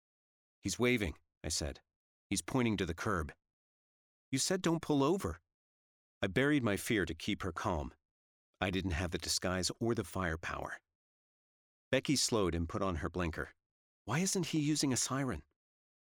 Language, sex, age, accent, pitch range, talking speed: English, male, 40-59, American, 80-105 Hz, 160 wpm